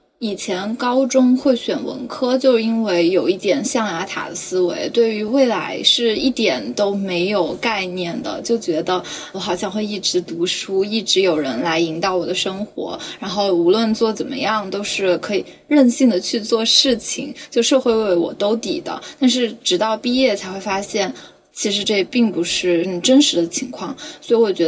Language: Chinese